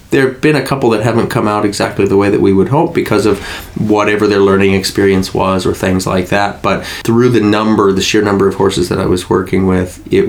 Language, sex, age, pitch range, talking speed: English, male, 20-39, 90-100 Hz, 245 wpm